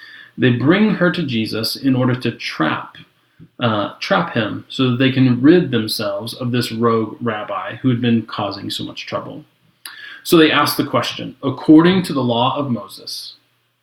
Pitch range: 115-145 Hz